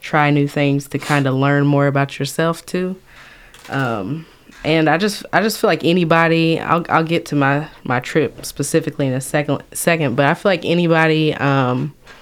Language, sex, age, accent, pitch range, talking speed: English, female, 20-39, American, 140-165 Hz, 185 wpm